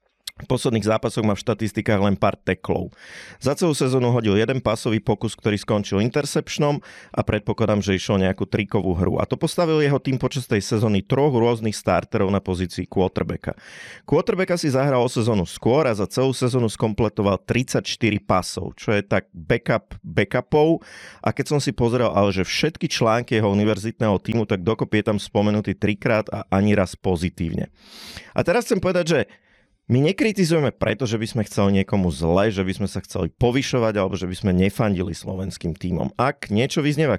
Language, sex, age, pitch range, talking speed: Slovak, male, 30-49, 100-130 Hz, 175 wpm